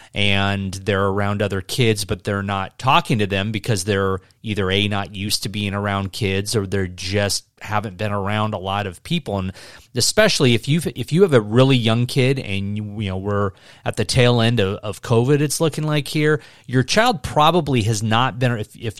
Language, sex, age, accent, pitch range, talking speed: English, male, 30-49, American, 105-135 Hz, 210 wpm